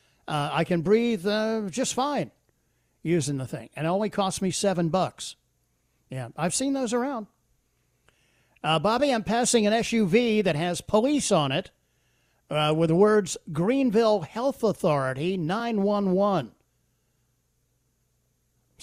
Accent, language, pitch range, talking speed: American, English, 140-210 Hz, 130 wpm